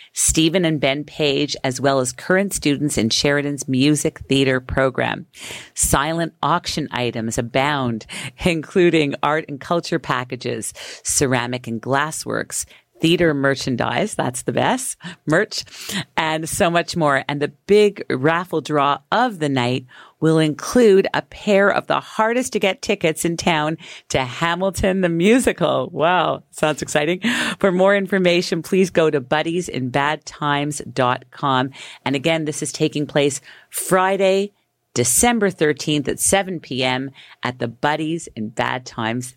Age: 50-69